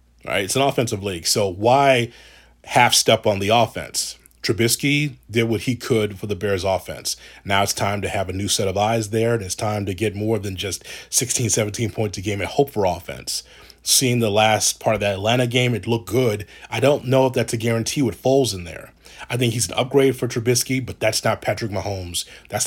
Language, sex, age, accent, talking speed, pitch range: English, male, 30-49, American, 220 wpm, 100-125 Hz